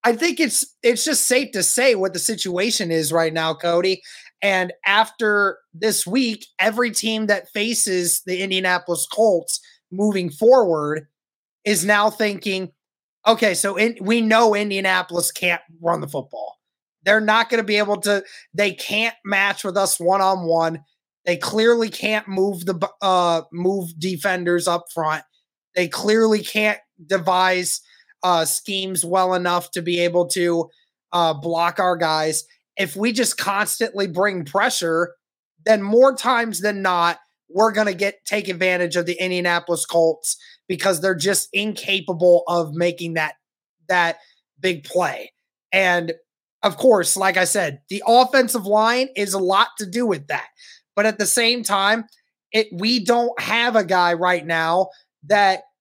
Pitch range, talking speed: 175-215 Hz, 150 wpm